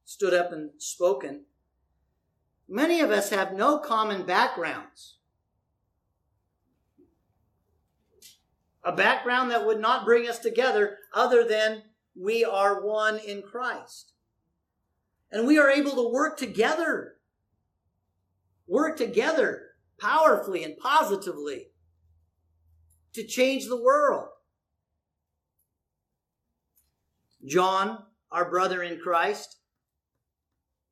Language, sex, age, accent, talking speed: English, male, 50-69, American, 90 wpm